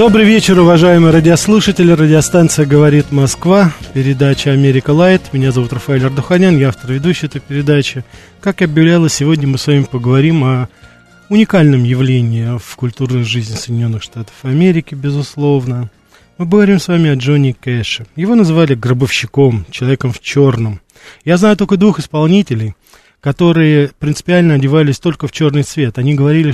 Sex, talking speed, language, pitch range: male, 145 wpm, Russian, 125-165 Hz